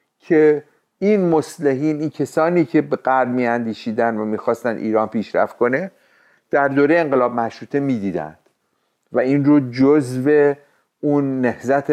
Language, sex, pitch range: Persian, male, 120-155 Hz